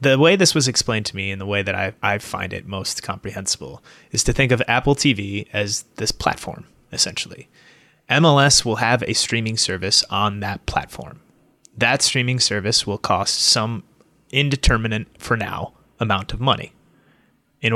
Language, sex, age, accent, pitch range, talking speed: English, male, 30-49, American, 100-125 Hz, 165 wpm